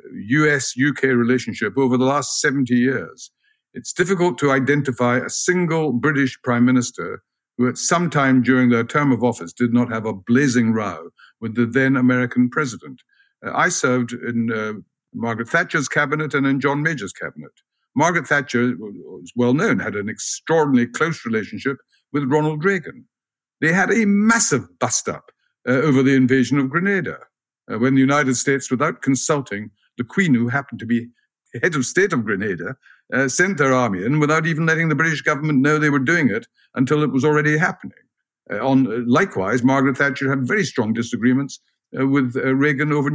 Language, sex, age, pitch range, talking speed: English, male, 60-79, 120-150 Hz, 175 wpm